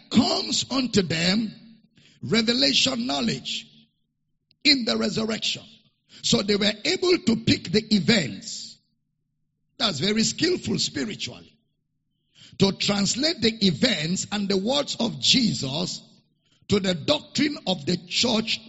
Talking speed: 110 wpm